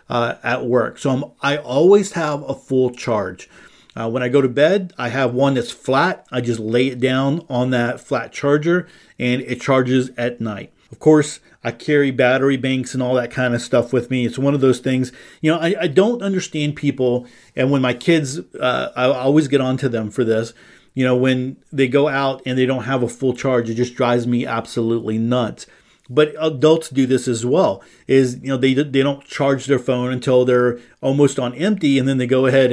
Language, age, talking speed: English, 40-59, 215 wpm